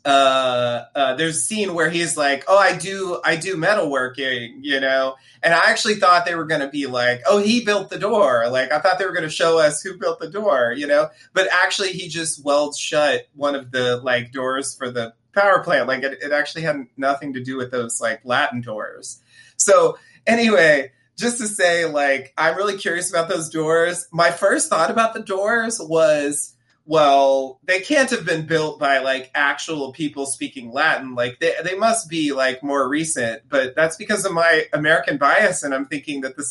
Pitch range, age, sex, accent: 135-195 Hz, 30-49, male, American